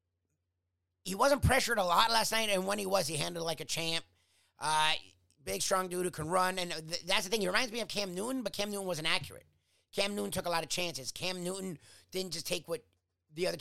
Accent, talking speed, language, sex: American, 240 wpm, English, male